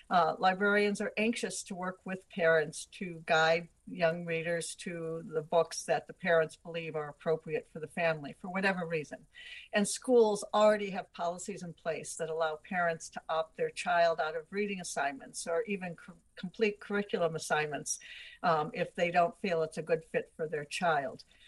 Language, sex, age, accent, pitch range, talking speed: English, female, 60-79, American, 160-200 Hz, 175 wpm